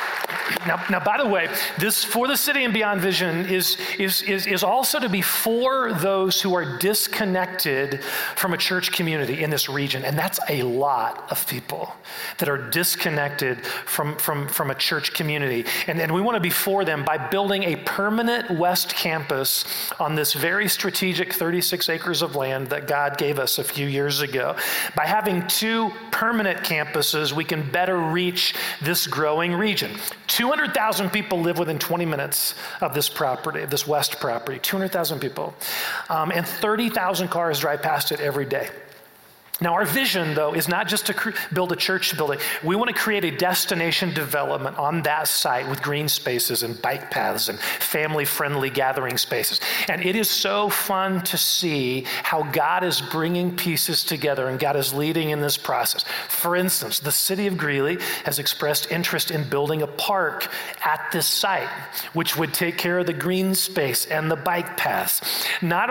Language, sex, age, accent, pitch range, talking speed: English, male, 40-59, American, 150-190 Hz, 175 wpm